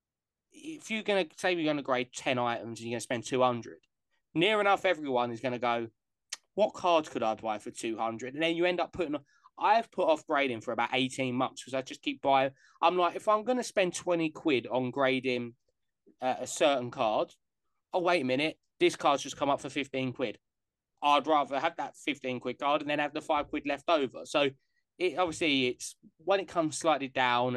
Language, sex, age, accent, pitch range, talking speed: English, male, 20-39, British, 125-160 Hz, 220 wpm